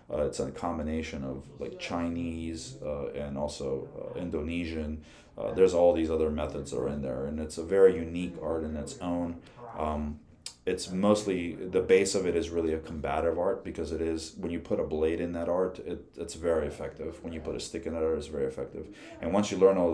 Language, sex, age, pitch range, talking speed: English, male, 30-49, 80-95 Hz, 225 wpm